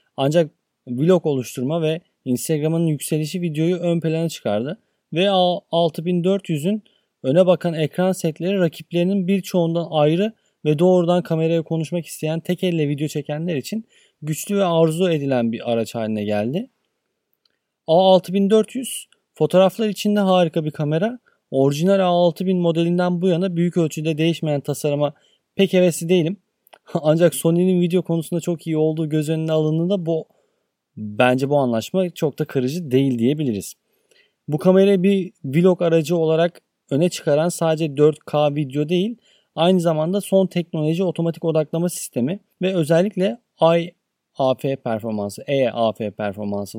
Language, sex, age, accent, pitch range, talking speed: Turkish, male, 30-49, native, 145-180 Hz, 125 wpm